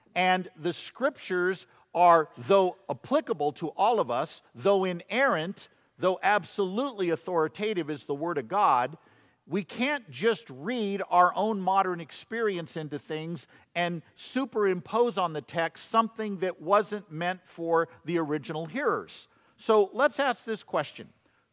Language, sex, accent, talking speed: English, male, American, 135 wpm